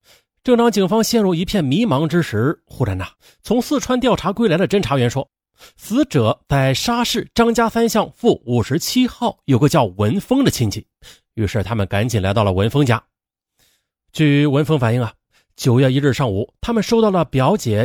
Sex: male